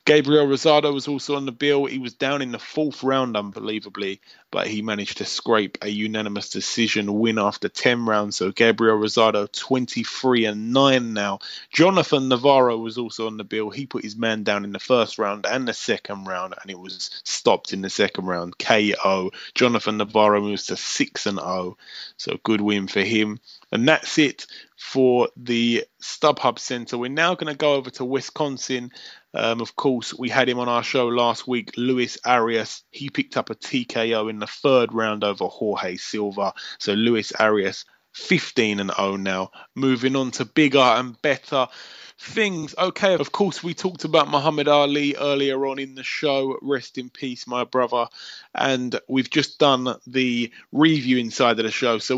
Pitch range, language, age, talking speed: 110-140 Hz, English, 20-39, 180 wpm